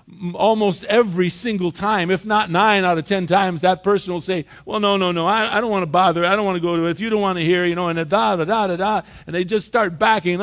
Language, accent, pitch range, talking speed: English, American, 165-205 Hz, 295 wpm